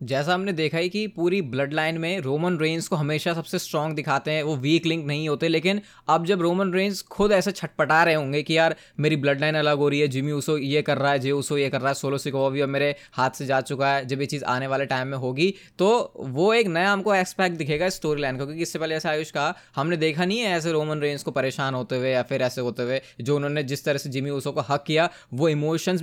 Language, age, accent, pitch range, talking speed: Hindi, 20-39, native, 145-175 Hz, 260 wpm